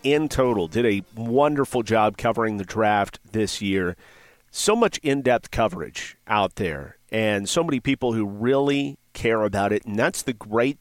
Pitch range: 110-135 Hz